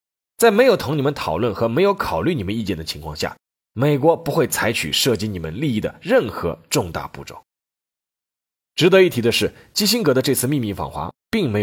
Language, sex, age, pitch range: Chinese, male, 20-39, 90-150 Hz